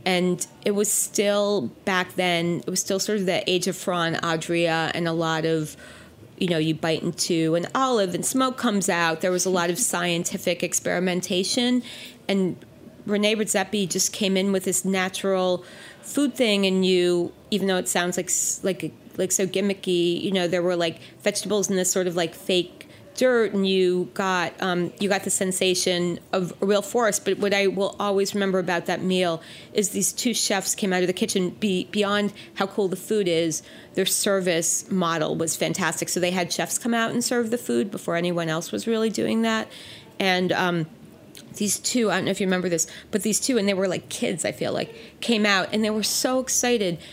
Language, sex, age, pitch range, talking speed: English, female, 30-49, 175-205 Hz, 205 wpm